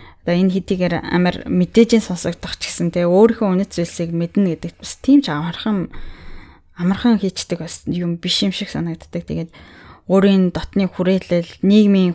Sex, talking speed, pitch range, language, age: female, 135 wpm, 170-195 Hz, Russian, 20-39